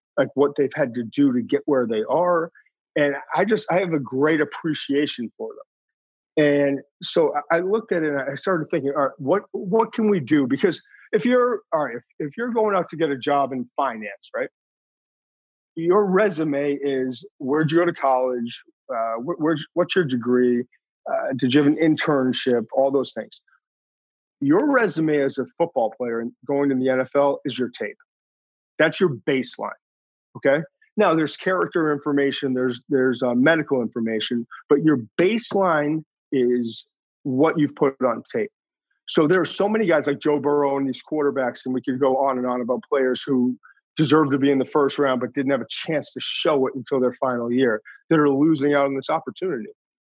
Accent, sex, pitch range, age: American, male, 130-170 Hz, 40-59